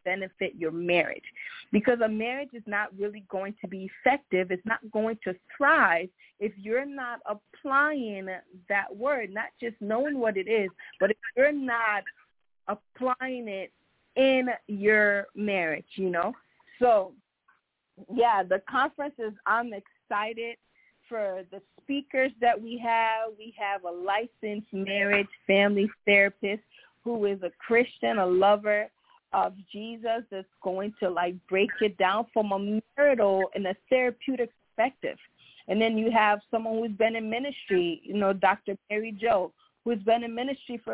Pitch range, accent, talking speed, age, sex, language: 195-230 Hz, American, 150 wpm, 30-49, female, English